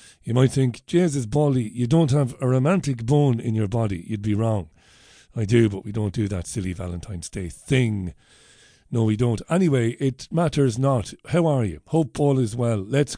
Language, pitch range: English, 105-145 Hz